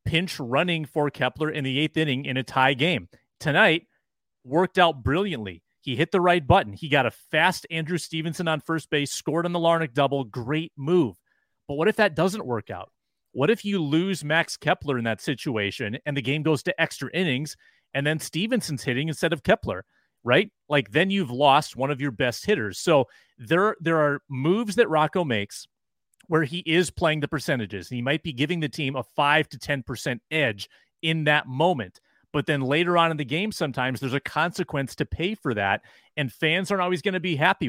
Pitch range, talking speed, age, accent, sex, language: 130-170 Hz, 205 wpm, 30-49, American, male, English